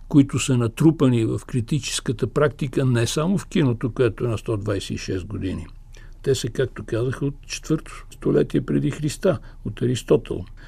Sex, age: male, 60-79